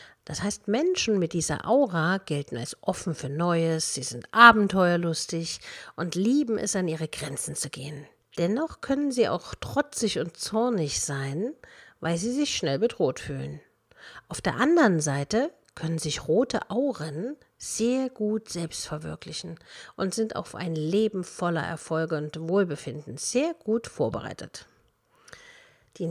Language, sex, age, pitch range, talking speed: German, female, 50-69, 160-230 Hz, 140 wpm